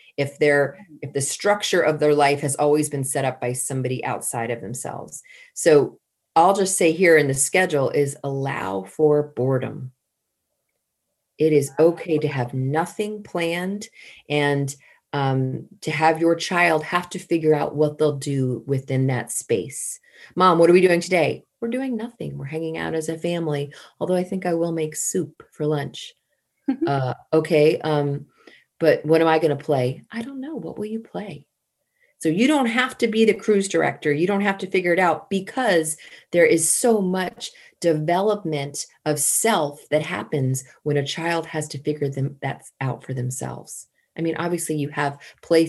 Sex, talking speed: female, 180 wpm